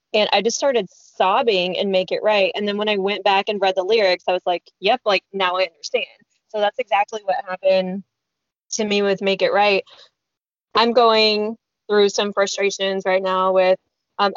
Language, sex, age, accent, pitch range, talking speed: English, female, 10-29, American, 190-220 Hz, 195 wpm